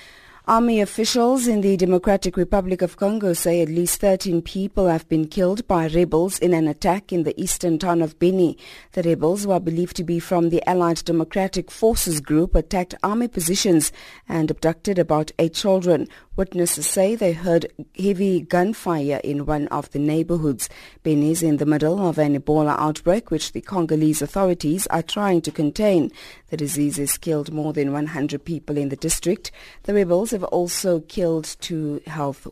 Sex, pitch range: female, 155-190 Hz